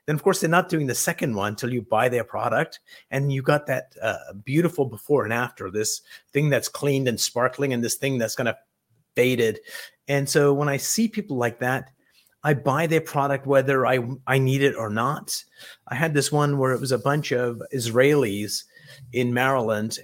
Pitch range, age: 120-145 Hz, 30-49